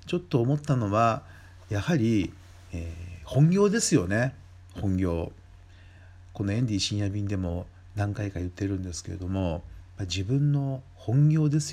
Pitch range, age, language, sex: 90-110 Hz, 50-69, Japanese, male